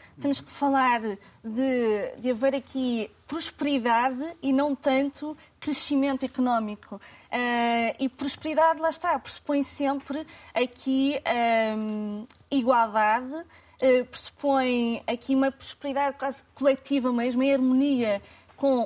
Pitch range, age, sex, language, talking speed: 235-275 Hz, 20-39, female, Portuguese, 100 wpm